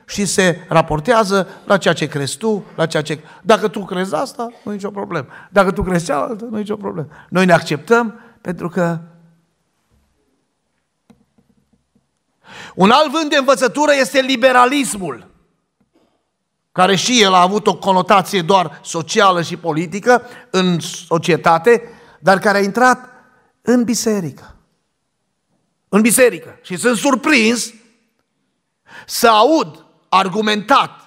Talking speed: 125 wpm